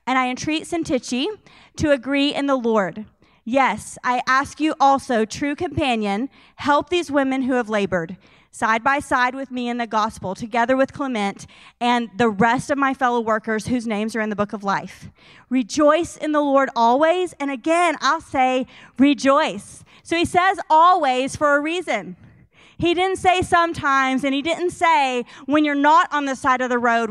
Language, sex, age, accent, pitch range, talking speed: English, female, 40-59, American, 235-320 Hz, 180 wpm